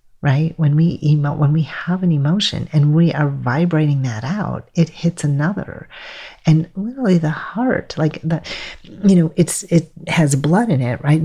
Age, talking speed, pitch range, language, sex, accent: 40-59, 175 wpm, 150-180 Hz, English, female, American